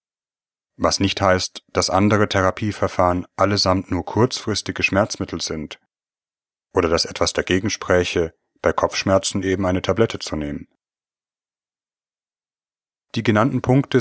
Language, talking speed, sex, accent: German, 110 wpm, male, German